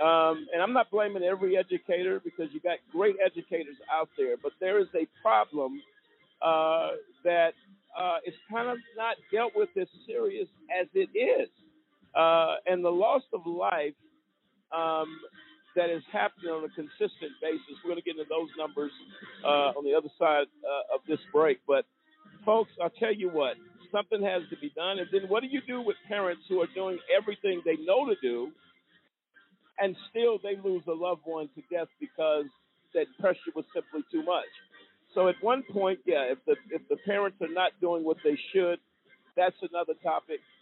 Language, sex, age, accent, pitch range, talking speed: English, male, 50-69, American, 160-245 Hz, 185 wpm